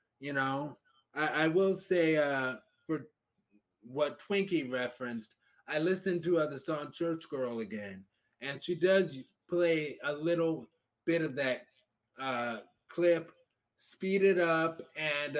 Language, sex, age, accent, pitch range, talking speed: English, male, 30-49, American, 130-170 Hz, 135 wpm